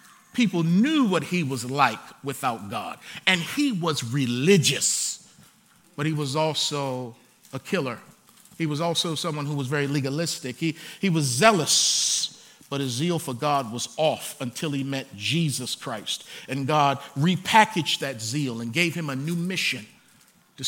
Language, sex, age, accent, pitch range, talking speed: English, male, 40-59, American, 145-190 Hz, 155 wpm